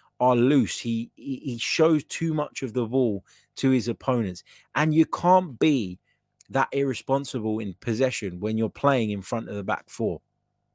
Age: 20-39